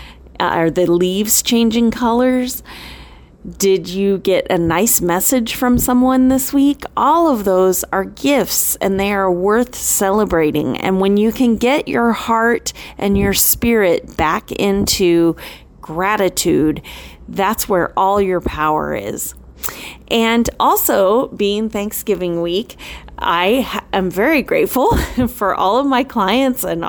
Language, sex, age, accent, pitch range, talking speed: English, female, 30-49, American, 185-235 Hz, 130 wpm